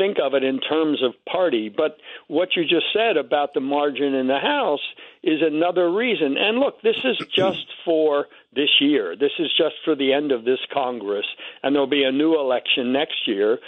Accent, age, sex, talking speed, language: American, 60-79, male, 200 wpm, English